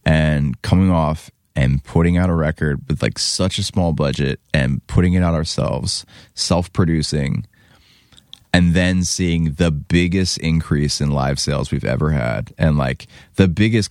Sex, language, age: male, English, 20-39